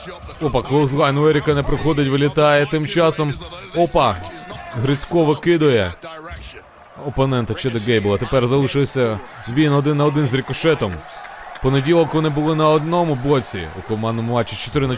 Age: 30-49